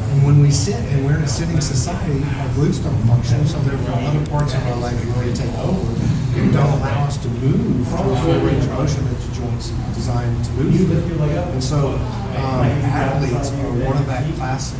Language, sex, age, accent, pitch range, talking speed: English, male, 40-59, American, 120-140 Hz, 205 wpm